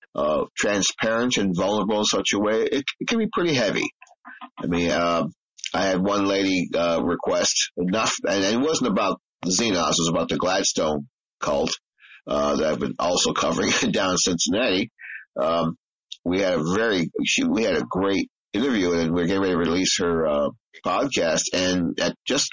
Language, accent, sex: English, American, male